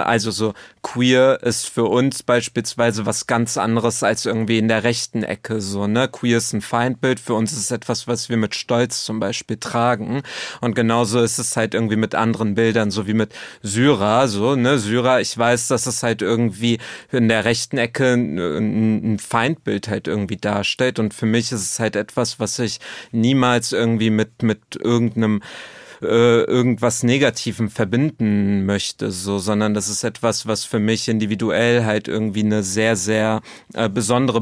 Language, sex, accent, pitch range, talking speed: German, male, German, 110-125 Hz, 175 wpm